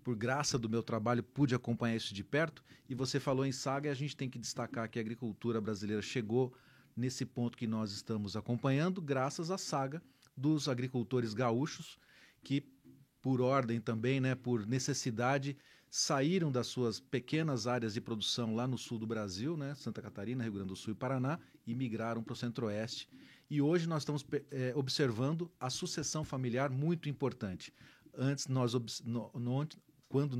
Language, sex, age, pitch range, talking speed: Portuguese, male, 40-59, 120-140 Hz, 170 wpm